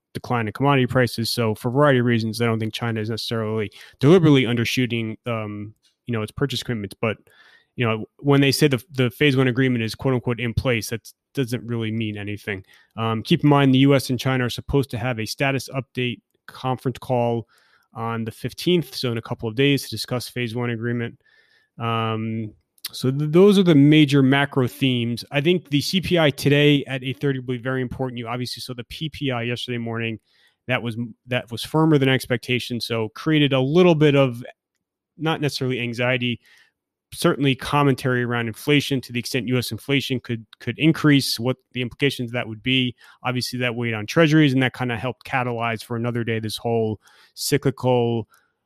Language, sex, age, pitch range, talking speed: English, male, 30-49, 115-135 Hz, 190 wpm